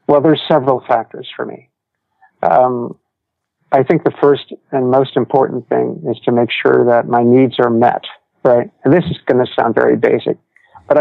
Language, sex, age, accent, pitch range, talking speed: English, male, 50-69, American, 120-135 Hz, 185 wpm